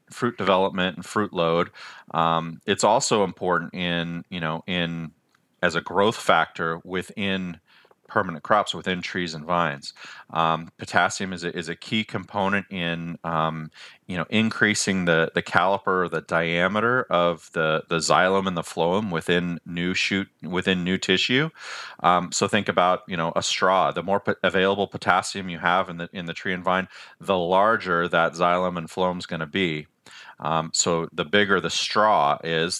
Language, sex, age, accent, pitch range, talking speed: English, male, 30-49, American, 80-95 Hz, 175 wpm